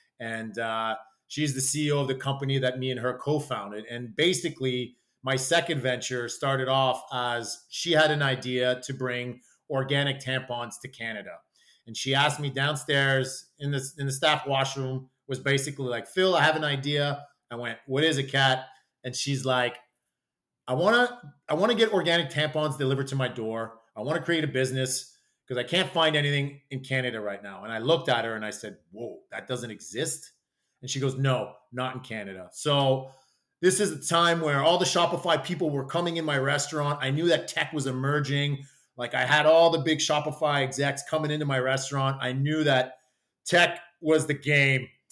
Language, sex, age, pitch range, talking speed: English, male, 30-49, 125-150 Hz, 195 wpm